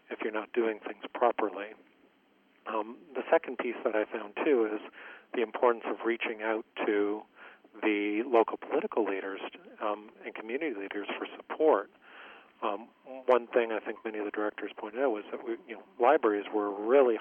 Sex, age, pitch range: male, 40-59, 105-115 Hz